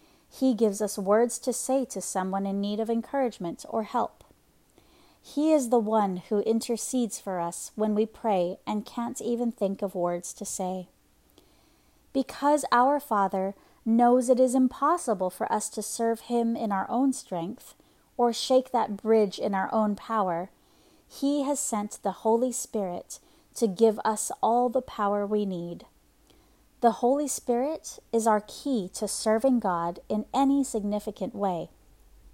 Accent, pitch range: American, 195-245 Hz